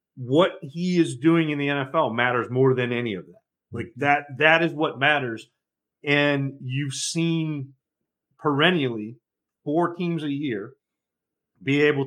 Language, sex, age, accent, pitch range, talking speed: English, male, 40-59, American, 130-155 Hz, 145 wpm